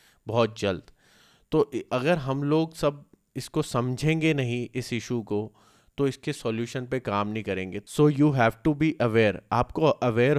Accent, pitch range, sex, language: native, 110-140 Hz, male, Hindi